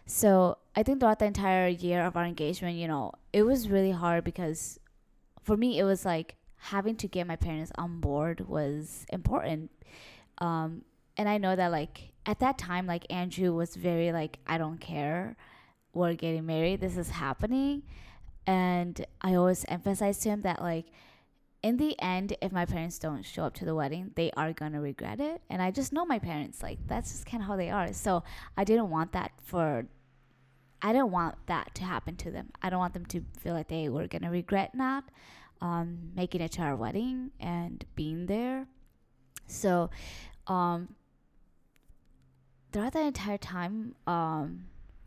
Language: English